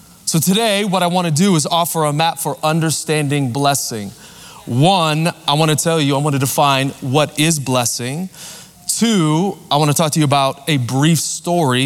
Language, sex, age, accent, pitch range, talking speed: English, male, 20-39, American, 140-170 Hz, 190 wpm